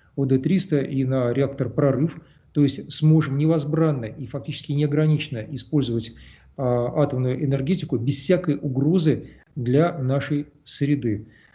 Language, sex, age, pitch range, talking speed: Russian, male, 40-59, 125-150 Hz, 110 wpm